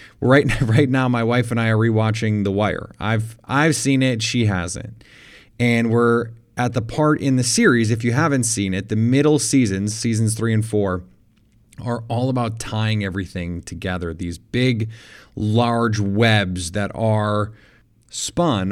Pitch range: 110-125 Hz